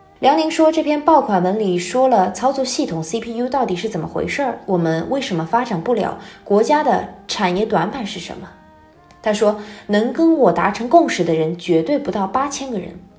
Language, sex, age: Chinese, female, 20-39